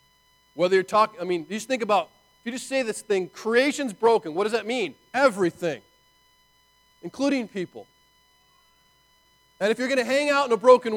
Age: 40-59